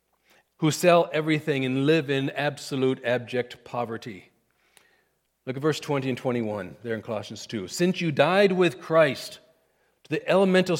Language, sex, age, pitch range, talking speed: English, male, 50-69, 135-185 Hz, 150 wpm